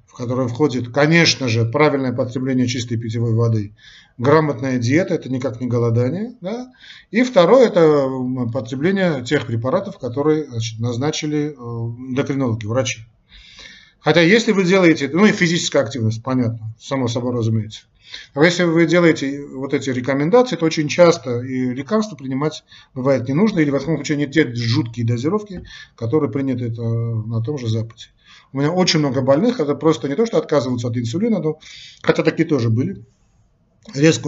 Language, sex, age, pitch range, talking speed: Russian, male, 40-59, 120-160 Hz, 150 wpm